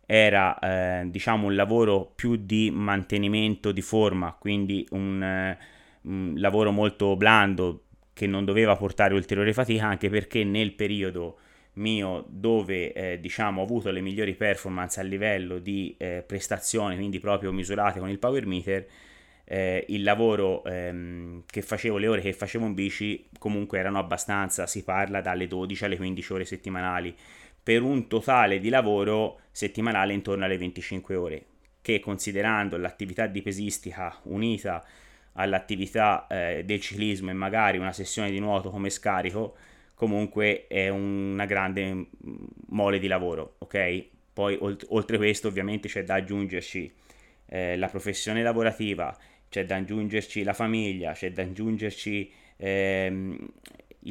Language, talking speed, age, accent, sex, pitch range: Italian, 140 wpm, 30-49, native, male, 95-105 Hz